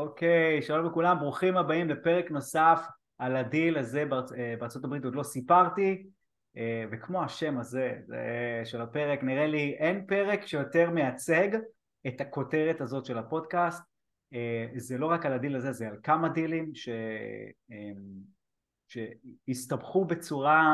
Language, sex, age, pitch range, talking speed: Hebrew, male, 20-39, 120-165 Hz, 125 wpm